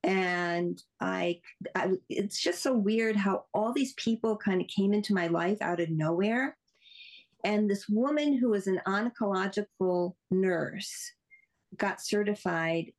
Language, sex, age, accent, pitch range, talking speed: English, female, 50-69, American, 180-225 Hz, 140 wpm